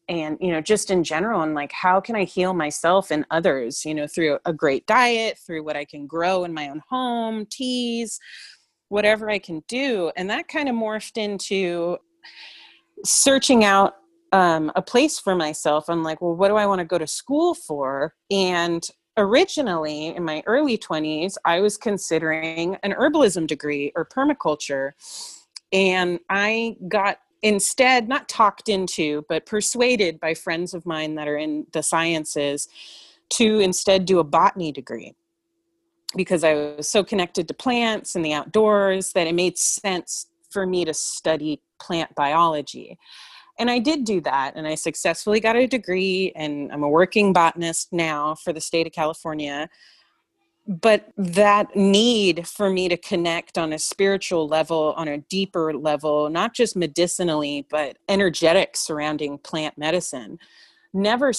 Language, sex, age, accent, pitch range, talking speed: English, female, 30-49, American, 160-210 Hz, 160 wpm